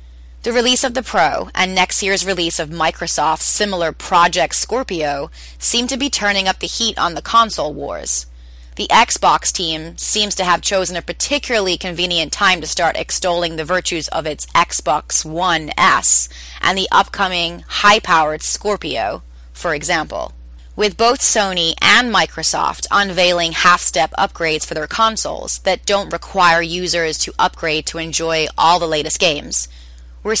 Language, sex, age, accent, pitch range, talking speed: English, female, 30-49, American, 150-195 Hz, 150 wpm